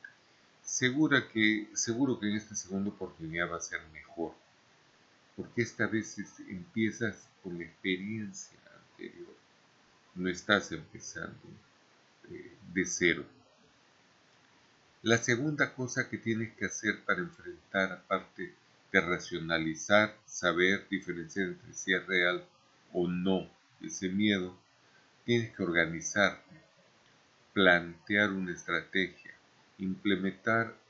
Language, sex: Spanish, male